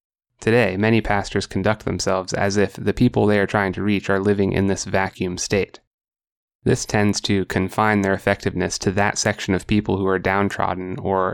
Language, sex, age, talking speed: English, male, 20-39, 185 wpm